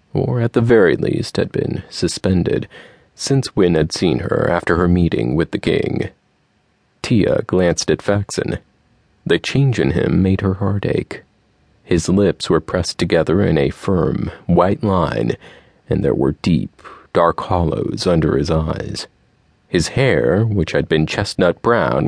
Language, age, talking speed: English, 30-49, 155 wpm